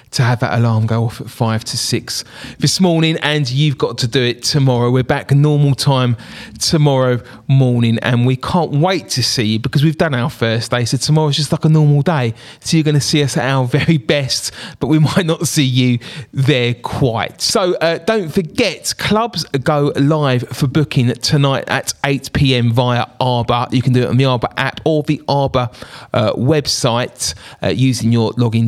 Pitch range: 120-150 Hz